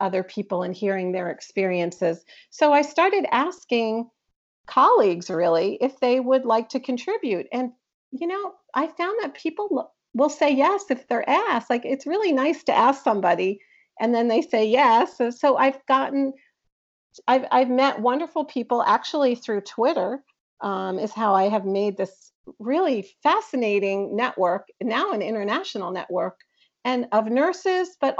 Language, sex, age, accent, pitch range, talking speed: English, female, 50-69, American, 200-265 Hz, 155 wpm